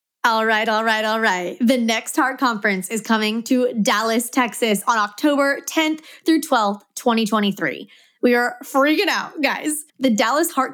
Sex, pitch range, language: female, 220-280 Hz, English